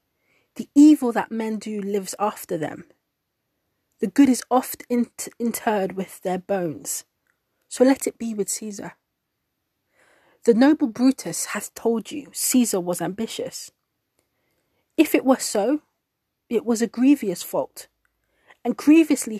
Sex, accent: female, British